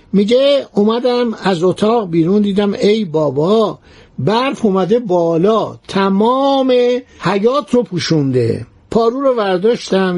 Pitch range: 165-230 Hz